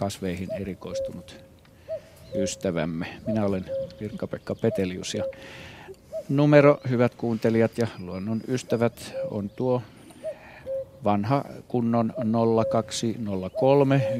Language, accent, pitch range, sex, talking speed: Finnish, native, 105-130 Hz, male, 80 wpm